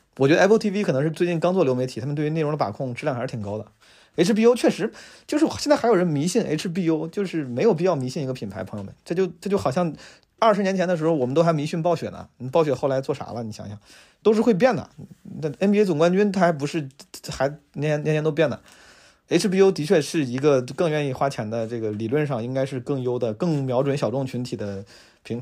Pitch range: 120-170 Hz